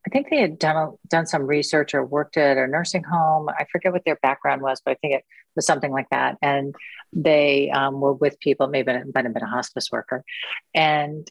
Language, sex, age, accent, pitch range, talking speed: English, female, 40-59, American, 135-165 Hz, 230 wpm